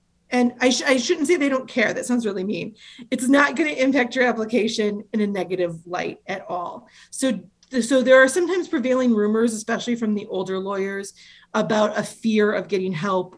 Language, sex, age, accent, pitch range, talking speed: English, female, 30-49, American, 190-240 Hz, 195 wpm